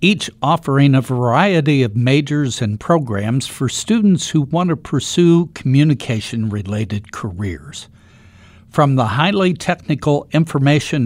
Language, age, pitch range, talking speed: English, 60-79, 110-165 Hz, 115 wpm